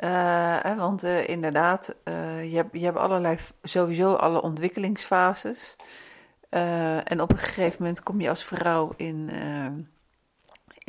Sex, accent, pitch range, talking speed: female, Dutch, 155-190 Hz, 140 wpm